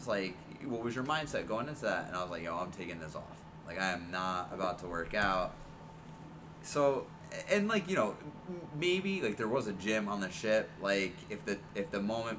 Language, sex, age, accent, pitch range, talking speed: English, male, 20-39, American, 100-150 Hz, 220 wpm